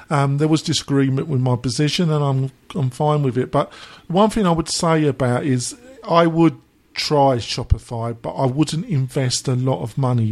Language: English